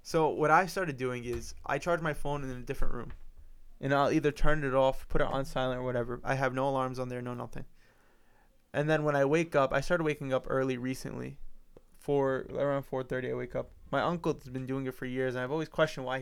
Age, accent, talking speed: 20-39, American, 235 wpm